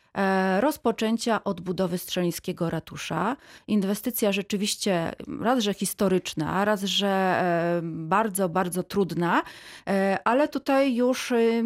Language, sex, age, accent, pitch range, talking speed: Polish, female, 30-49, native, 190-225 Hz, 85 wpm